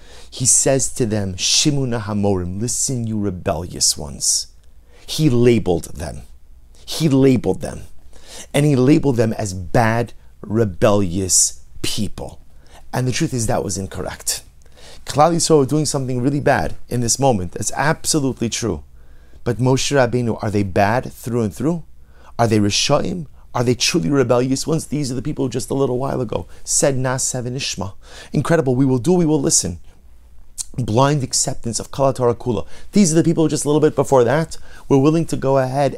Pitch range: 100-160 Hz